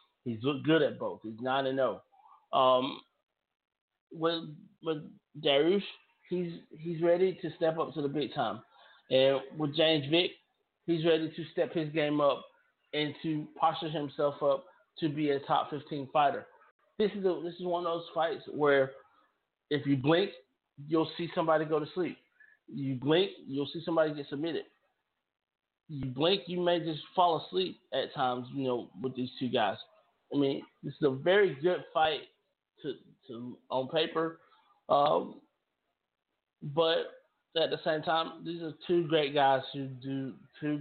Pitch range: 135-165 Hz